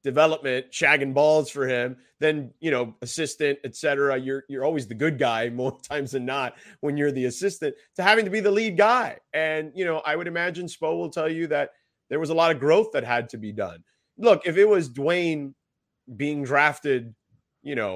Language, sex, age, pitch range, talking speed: English, male, 30-49, 130-160 Hz, 205 wpm